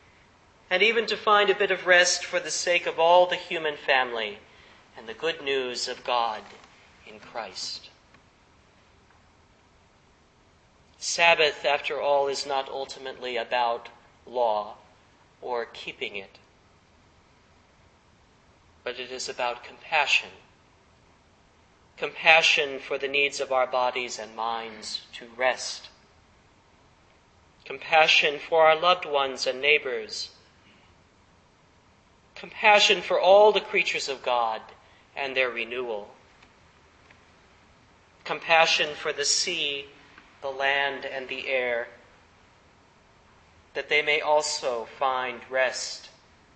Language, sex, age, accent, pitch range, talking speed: English, male, 40-59, American, 110-155 Hz, 105 wpm